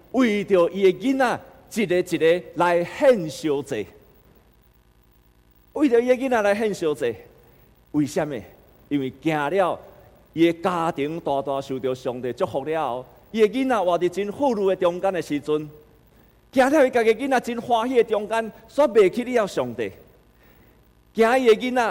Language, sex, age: Chinese, male, 50-69